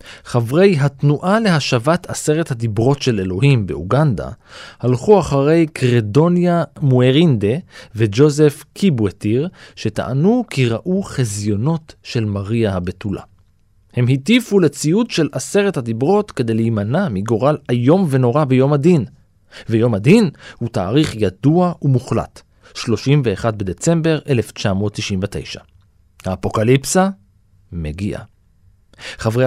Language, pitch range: Hebrew, 105-150 Hz